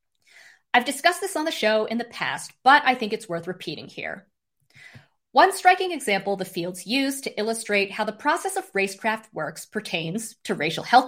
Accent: American